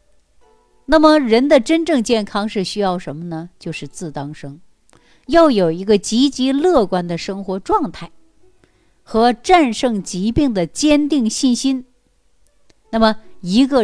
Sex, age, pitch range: female, 50-69, 175-255 Hz